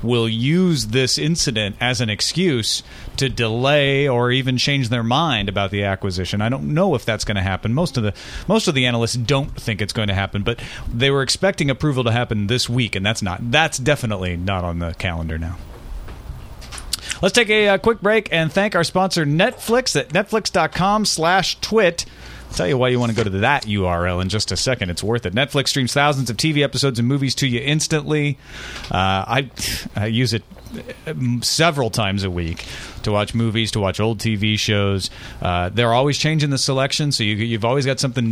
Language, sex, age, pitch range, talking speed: English, male, 30-49, 105-145 Hz, 200 wpm